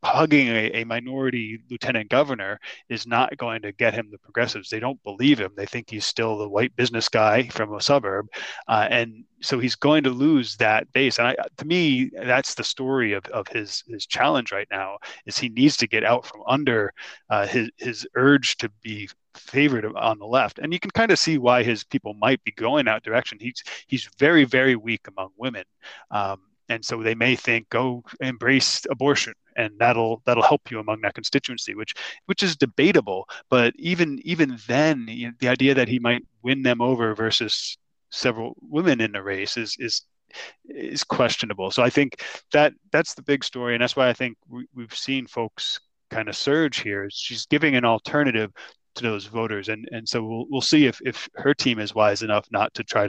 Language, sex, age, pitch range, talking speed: English, male, 30-49, 110-135 Hz, 205 wpm